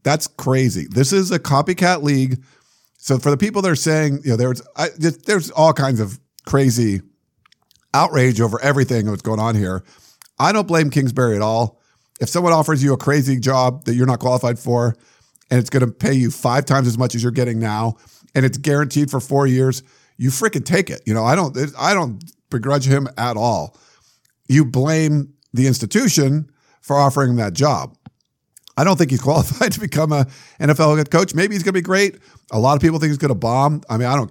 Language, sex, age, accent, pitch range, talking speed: English, male, 50-69, American, 120-150 Hz, 210 wpm